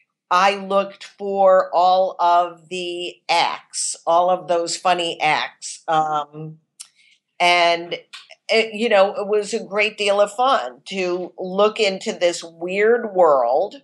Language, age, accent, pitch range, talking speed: English, 50-69, American, 170-195 Hz, 130 wpm